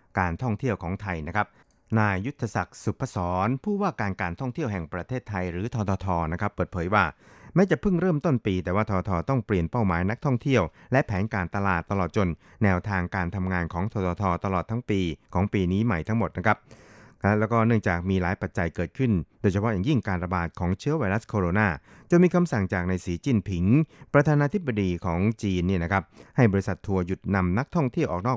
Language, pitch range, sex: Thai, 90-115 Hz, male